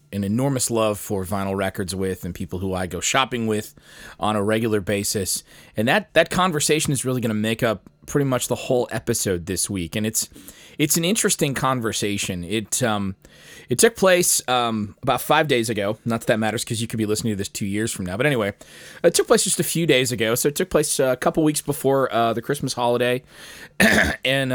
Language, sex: English, male